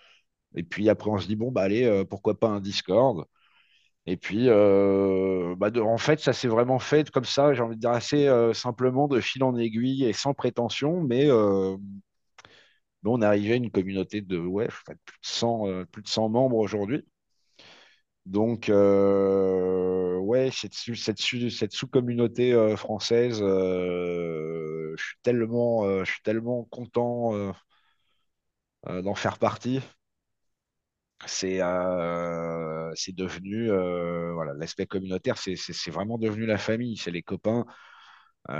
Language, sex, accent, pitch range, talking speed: French, male, French, 95-120 Hz, 155 wpm